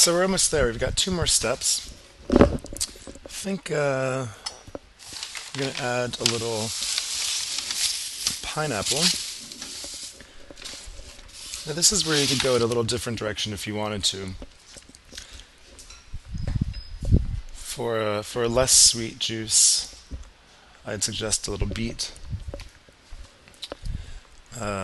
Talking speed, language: 110 wpm, English